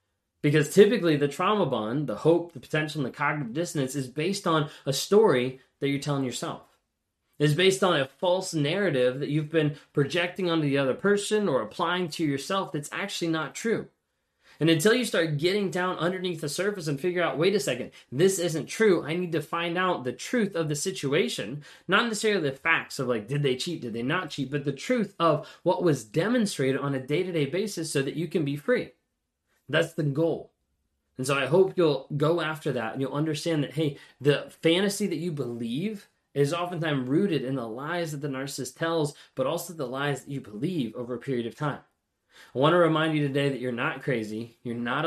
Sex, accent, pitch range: male, American, 130-170 Hz